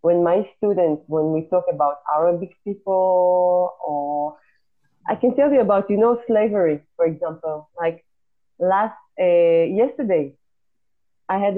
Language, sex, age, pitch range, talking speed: English, female, 30-49, 160-215 Hz, 135 wpm